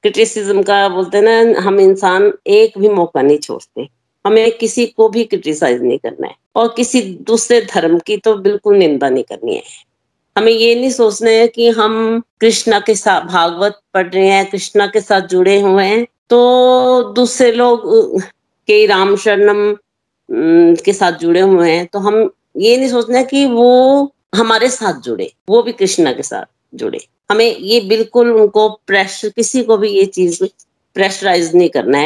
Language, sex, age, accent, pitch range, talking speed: Hindi, female, 50-69, native, 190-245 Hz, 170 wpm